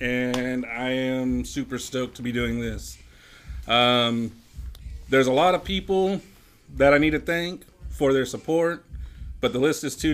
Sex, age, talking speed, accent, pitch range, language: male, 30-49, 165 wpm, American, 115-135 Hz, English